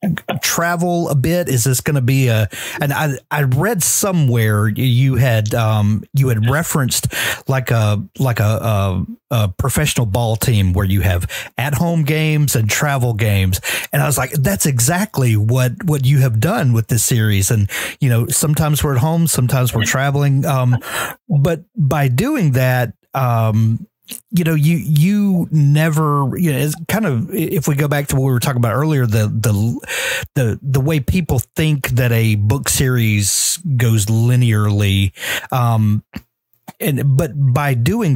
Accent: American